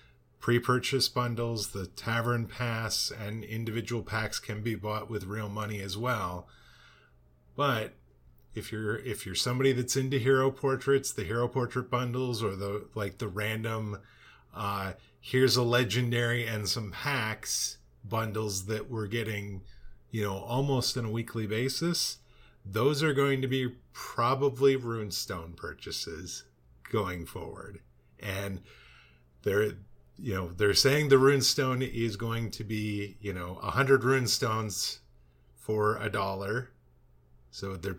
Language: English